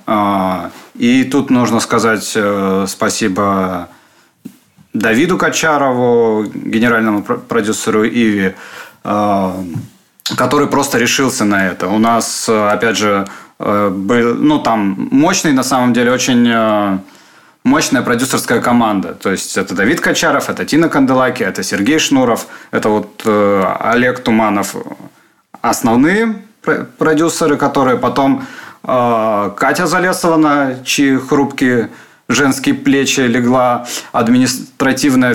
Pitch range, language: 105-135 Hz, Russian